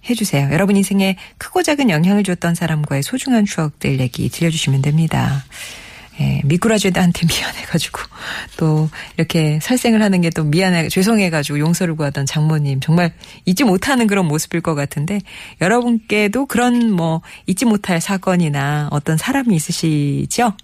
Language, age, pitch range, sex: Korean, 40-59, 155-210 Hz, female